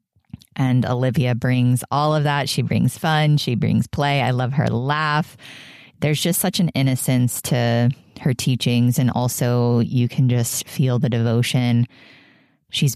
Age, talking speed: 20-39, 155 wpm